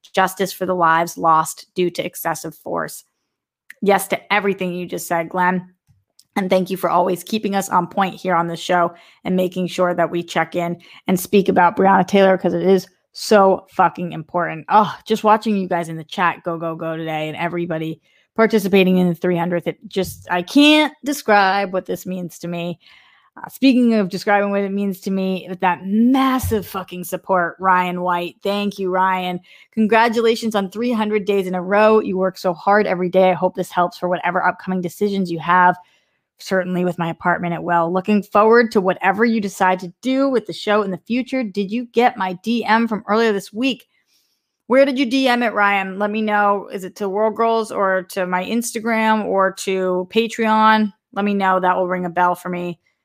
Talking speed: 200 wpm